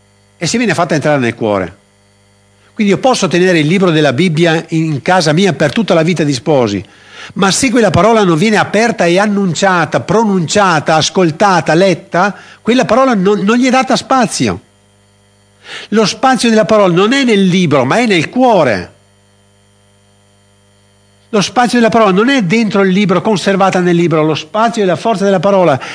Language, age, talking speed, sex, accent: Italian, 60-79, 170 wpm, male, native